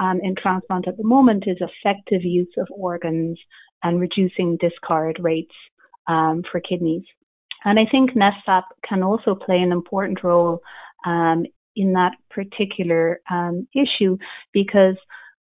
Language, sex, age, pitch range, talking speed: English, female, 30-49, 175-195 Hz, 135 wpm